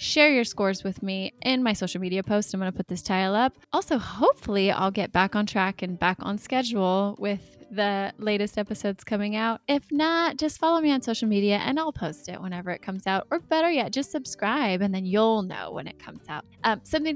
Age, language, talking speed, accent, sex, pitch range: 20-39, English, 225 wpm, American, female, 190-225 Hz